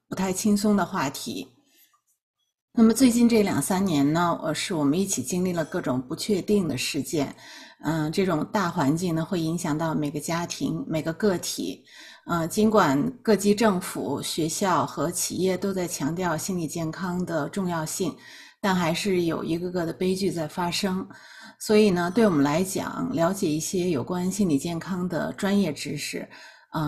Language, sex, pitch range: Chinese, female, 165-200 Hz